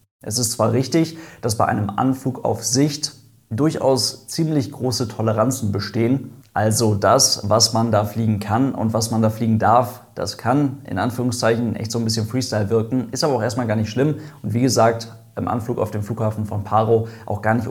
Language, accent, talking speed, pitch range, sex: German, German, 195 wpm, 110-130 Hz, male